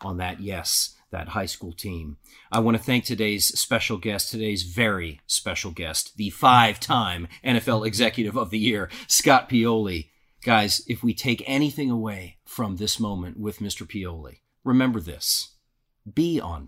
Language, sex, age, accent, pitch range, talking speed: English, male, 40-59, American, 100-130 Hz, 155 wpm